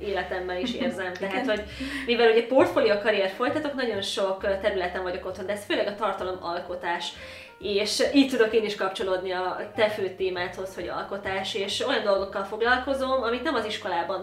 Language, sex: Hungarian, female